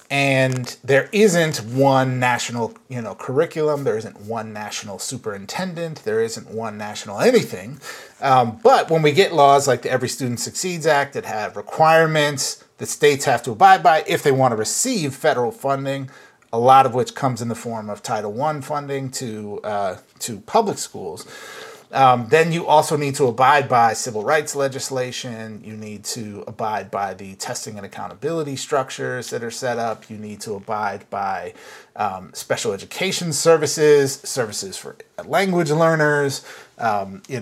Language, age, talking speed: English, 30-49, 165 wpm